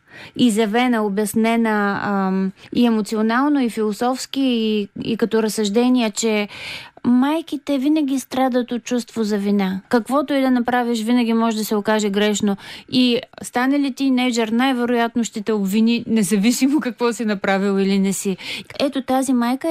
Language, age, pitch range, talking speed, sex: Bulgarian, 20-39, 220-270 Hz, 150 wpm, female